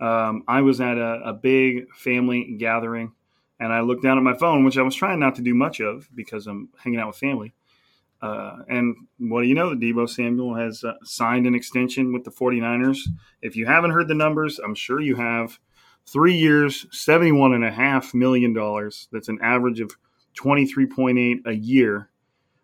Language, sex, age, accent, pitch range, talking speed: English, male, 30-49, American, 115-135 Hz, 185 wpm